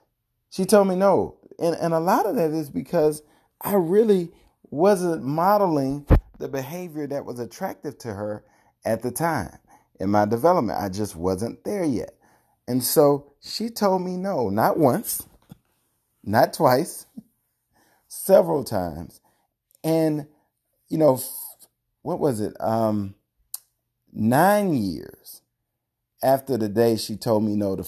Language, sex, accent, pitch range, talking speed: English, male, American, 120-180 Hz, 140 wpm